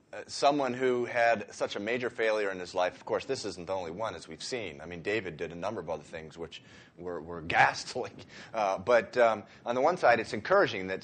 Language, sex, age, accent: English, male, 30-49, American